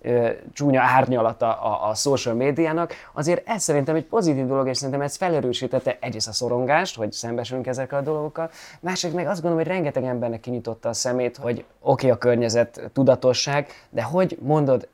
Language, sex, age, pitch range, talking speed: Hungarian, male, 20-39, 120-150 Hz, 175 wpm